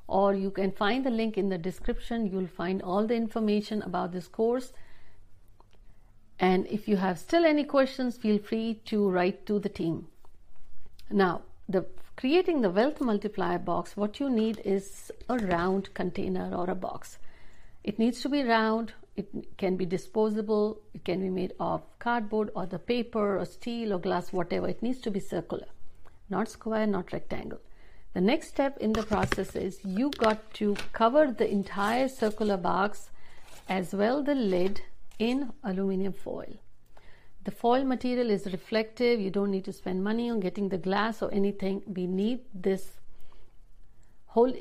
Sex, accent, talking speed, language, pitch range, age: female, native, 165 wpm, Hindi, 185-230 Hz, 60-79